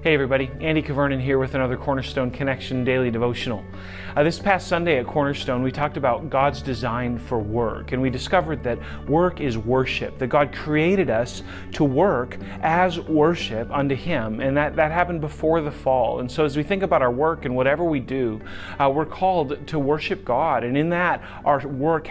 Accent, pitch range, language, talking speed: American, 125-150 Hz, English, 195 wpm